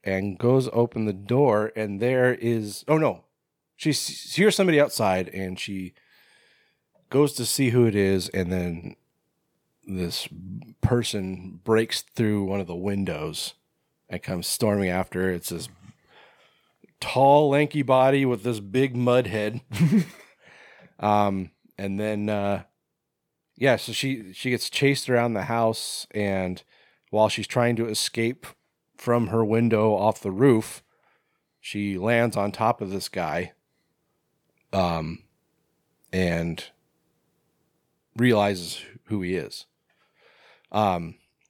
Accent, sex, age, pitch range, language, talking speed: American, male, 30-49, 95-120 Hz, English, 125 wpm